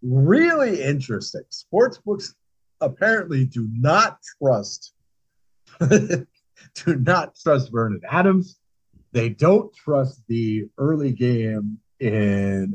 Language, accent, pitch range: English, American, 110-155 Hz